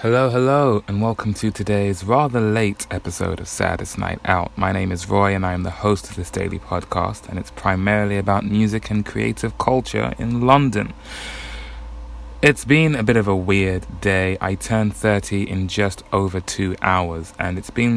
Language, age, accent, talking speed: English, 20-39, British, 185 wpm